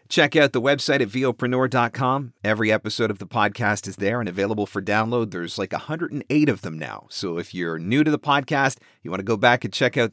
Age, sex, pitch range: 40-59, male, 105-130 Hz